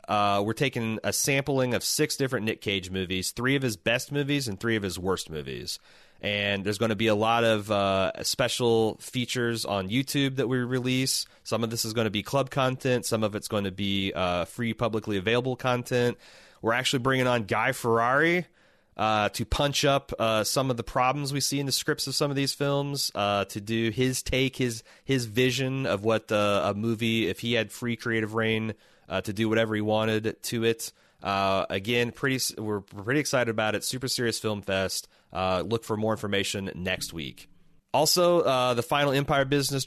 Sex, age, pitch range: male, 30-49, 100-130 Hz